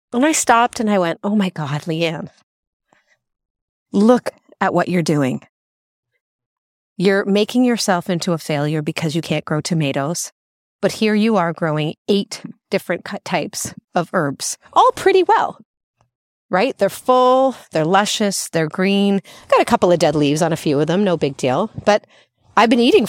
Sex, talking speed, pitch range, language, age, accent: female, 170 wpm, 160-225 Hz, English, 30-49, American